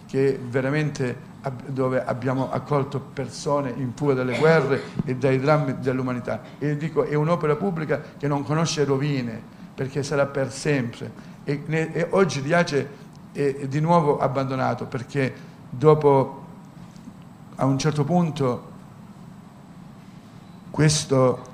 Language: Italian